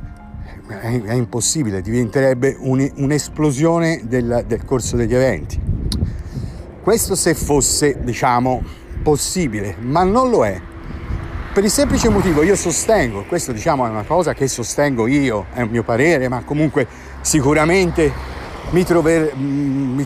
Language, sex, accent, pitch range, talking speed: Italian, male, native, 110-150 Hz, 125 wpm